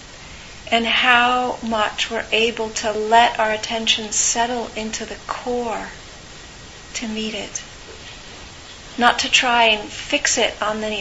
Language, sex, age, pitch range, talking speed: English, female, 40-59, 210-240 Hz, 130 wpm